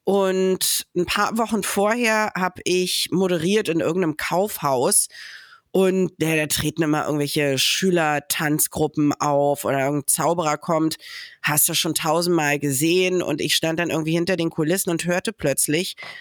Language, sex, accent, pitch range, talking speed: German, female, German, 150-195 Hz, 145 wpm